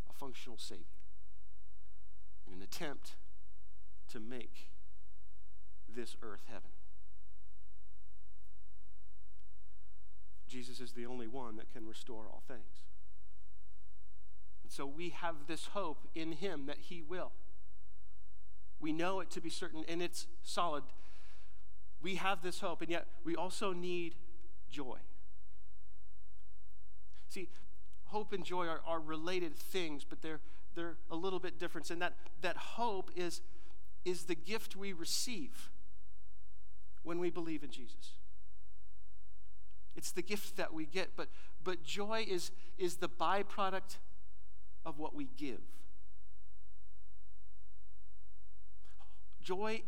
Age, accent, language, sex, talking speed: 50-69, American, English, male, 115 wpm